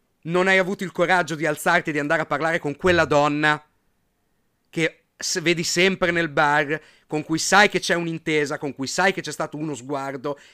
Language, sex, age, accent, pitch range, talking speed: Italian, male, 40-59, native, 145-205 Hz, 200 wpm